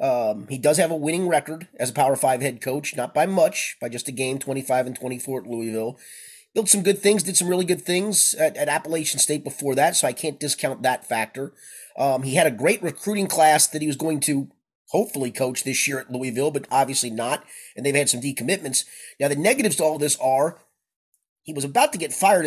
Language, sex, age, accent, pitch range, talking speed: English, male, 30-49, American, 140-190 Hz, 225 wpm